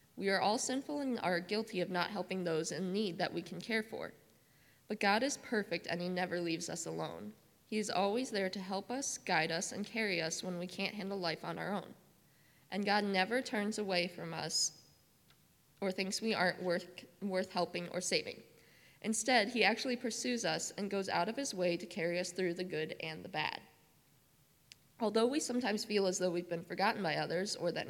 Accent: American